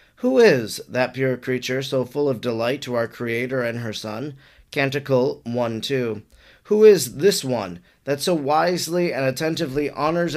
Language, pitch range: English, 130-165 Hz